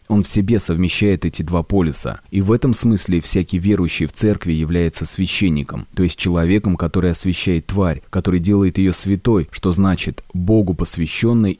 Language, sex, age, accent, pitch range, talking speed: Russian, male, 30-49, native, 85-100 Hz, 160 wpm